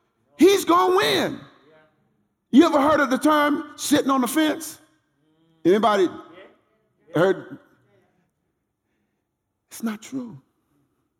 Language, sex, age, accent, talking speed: English, male, 50-69, American, 100 wpm